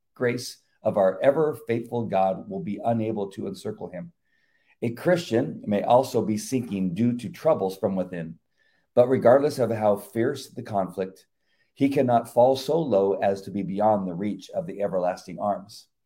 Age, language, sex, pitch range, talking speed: 50-69, English, male, 100-130 Hz, 170 wpm